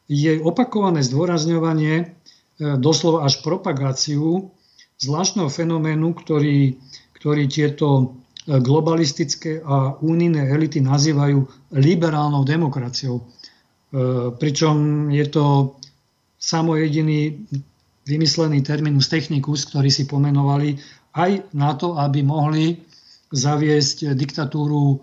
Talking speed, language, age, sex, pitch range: 85 wpm, Slovak, 50-69, male, 140-165 Hz